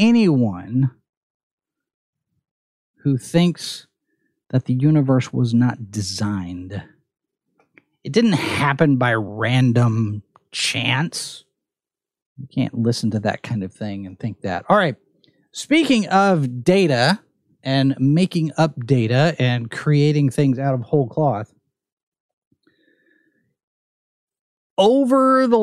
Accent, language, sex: American, English, male